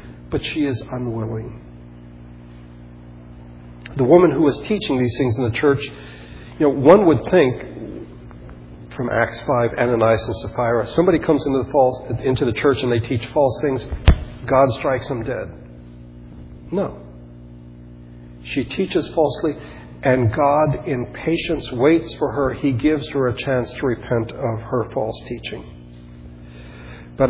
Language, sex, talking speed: English, male, 145 wpm